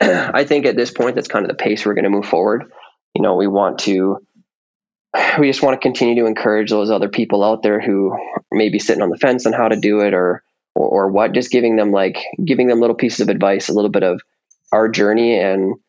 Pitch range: 105-120 Hz